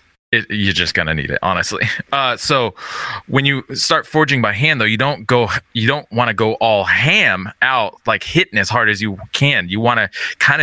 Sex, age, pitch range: male, 20-39, 95-125 Hz